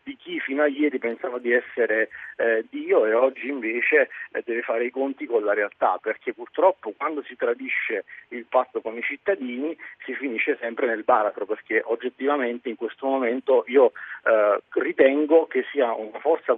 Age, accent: 50-69, native